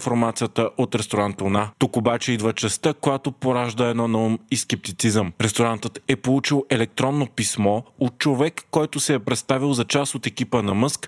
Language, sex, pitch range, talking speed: Bulgarian, male, 115-135 Hz, 160 wpm